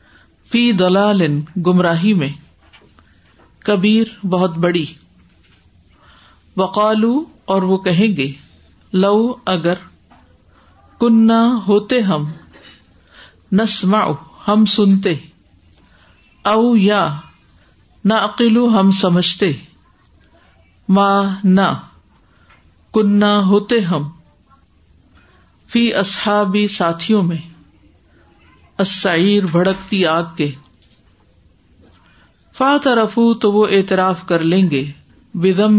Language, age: English, 50-69